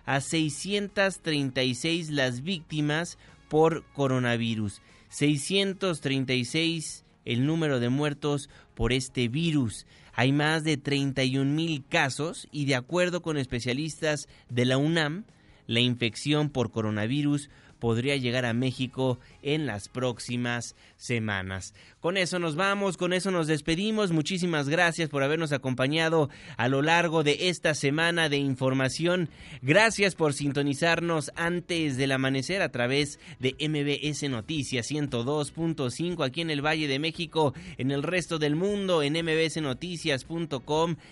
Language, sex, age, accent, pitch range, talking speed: Spanish, male, 30-49, Mexican, 130-165 Hz, 125 wpm